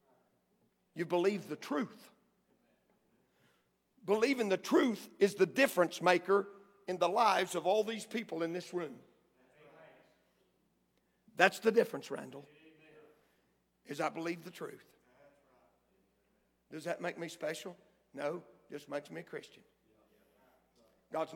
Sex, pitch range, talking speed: male, 160-225 Hz, 120 wpm